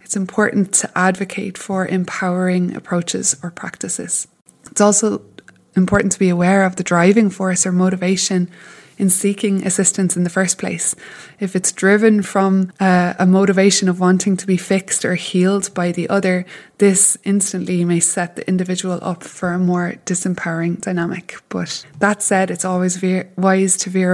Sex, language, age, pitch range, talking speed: female, English, 20-39, 180-200 Hz, 160 wpm